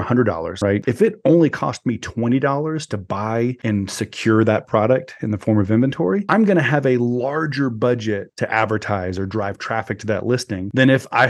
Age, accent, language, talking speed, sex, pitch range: 30-49, American, English, 190 wpm, male, 105-135 Hz